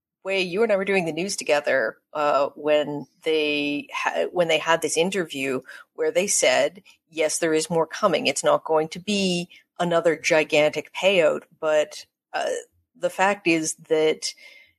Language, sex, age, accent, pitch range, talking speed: English, female, 40-59, American, 155-195 Hz, 160 wpm